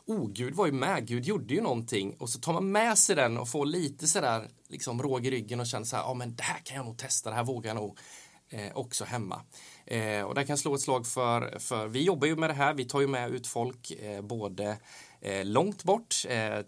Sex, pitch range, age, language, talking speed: male, 105-140 Hz, 20-39, Swedish, 260 wpm